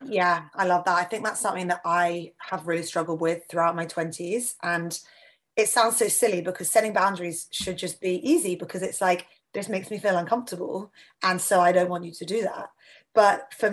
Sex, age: female, 20-39